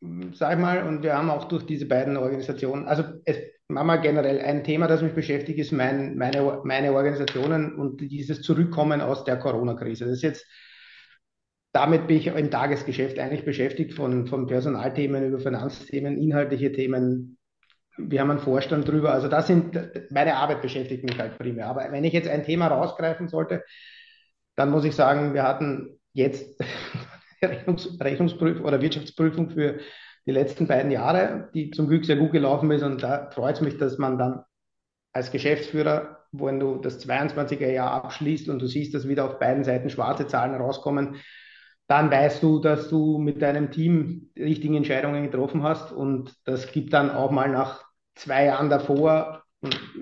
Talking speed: 170 wpm